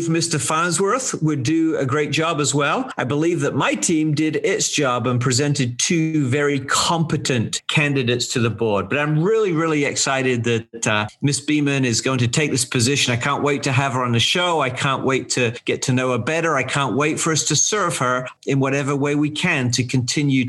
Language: English